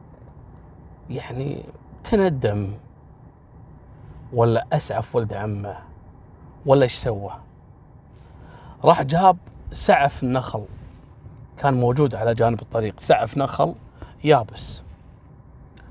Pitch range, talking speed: 105-165 Hz, 80 wpm